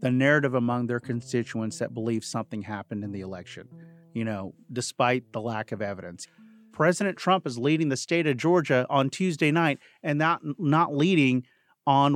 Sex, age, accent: male, 40-59, American